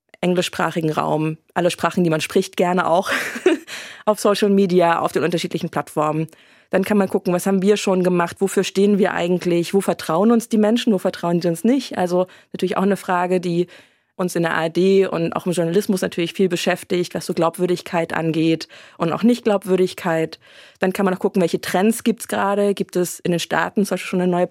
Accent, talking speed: German, 205 wpm